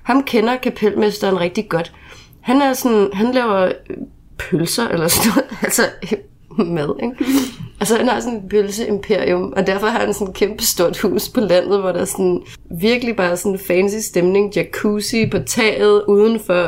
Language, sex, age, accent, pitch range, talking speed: Danish, female, 30-49, native, 170-210 Hz, 175 wpm